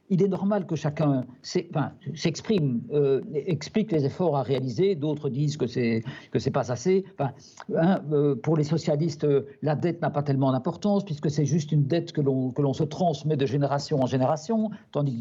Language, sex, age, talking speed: French, male, 50-69, 200 wpm